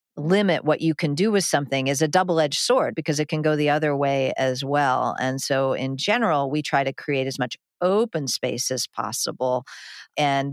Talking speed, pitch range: 200 wpm, 135-165 Hz